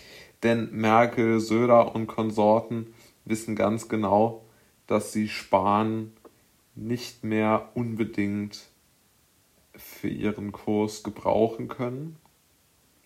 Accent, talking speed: German, 85 wpm